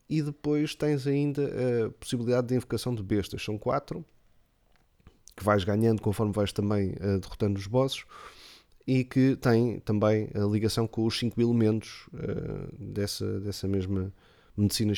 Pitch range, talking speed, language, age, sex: 105-125 Hz, 140 wpm, Portuguese, 20-39, male